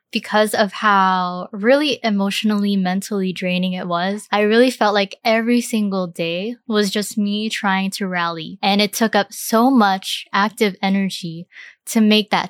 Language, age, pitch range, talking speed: English, 10-29, 190-220 Hz, 160 wpm